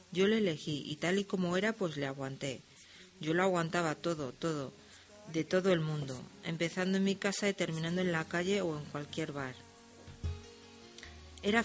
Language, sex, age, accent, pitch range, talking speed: Spanish, female, 40-59, Spanish, 155-190 Hz, 175 wpm